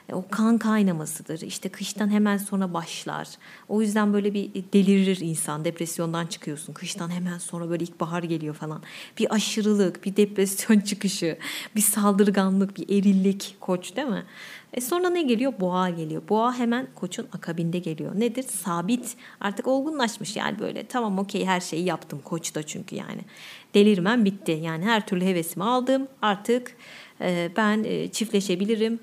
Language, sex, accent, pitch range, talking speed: Turkish, female, native, 175-220 Hz, 145 wpm